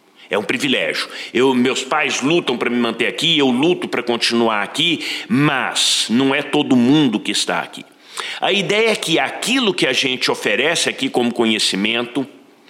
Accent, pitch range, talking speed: Brazilian, 110-155 Hz, 165 wpm